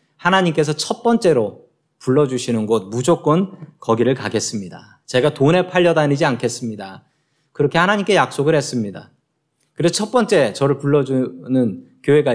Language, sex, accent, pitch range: Korean, male, native, 120-165 Hz